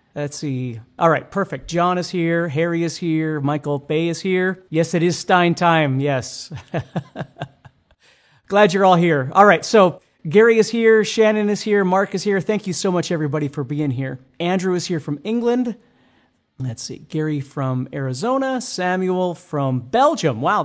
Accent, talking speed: American, 170 wpm